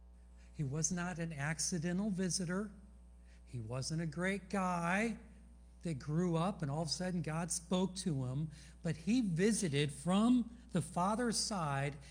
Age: 60-79